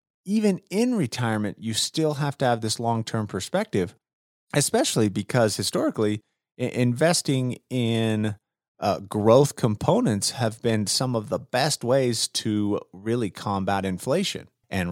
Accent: American